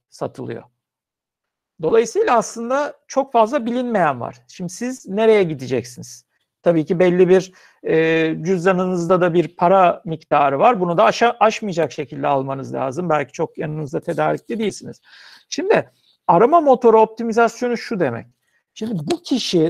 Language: Turkish